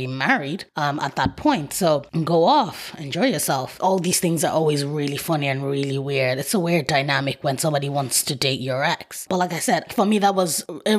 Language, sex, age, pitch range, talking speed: English, female, 20-39, 155-210 Hz, 220 wpm